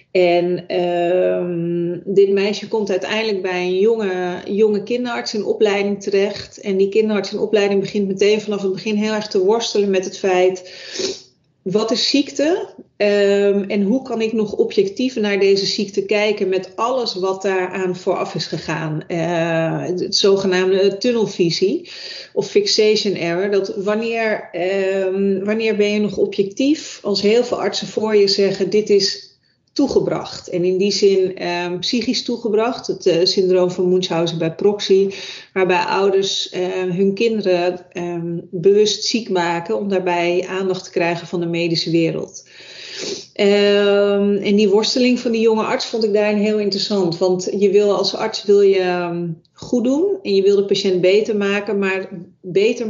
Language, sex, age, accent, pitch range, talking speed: Dutch, female, 40-59, Dutch, 185-215 Hz, 155 wpm